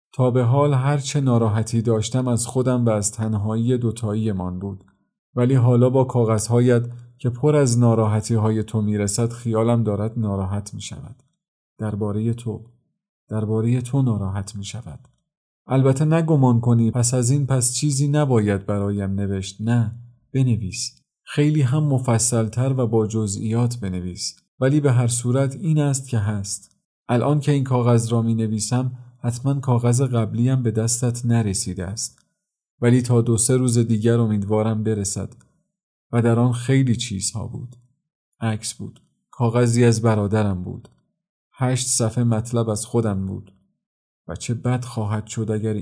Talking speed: 140 wpm